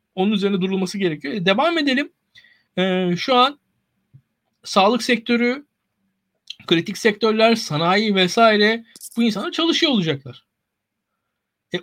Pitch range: 170-245 Hz